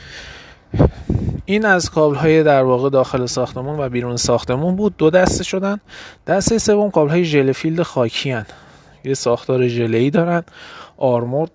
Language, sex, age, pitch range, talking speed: Persian, male, 20-39, 115-155 Hz, 125 wpm